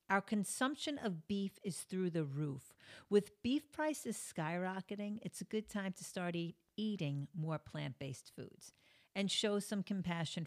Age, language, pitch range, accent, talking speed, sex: 50-69, English, 175-245 Hz, American, 150 wpm, female